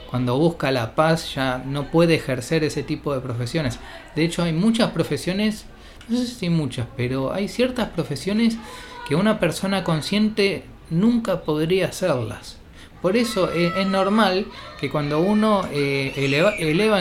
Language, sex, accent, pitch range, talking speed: Spanish, male, Argentinian, 135-190 Hz, 150 wpm